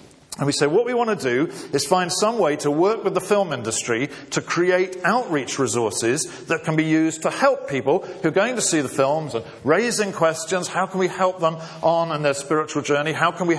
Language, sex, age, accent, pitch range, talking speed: English, male, 50-69, British, 150-200 Hz, 230 wpm